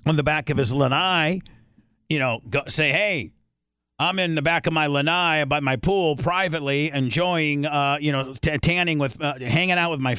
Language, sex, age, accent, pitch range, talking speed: English, male, 50-69, American, 120-155 Hz, 200 wpm